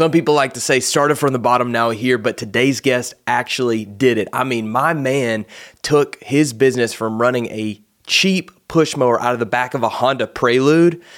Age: 20-39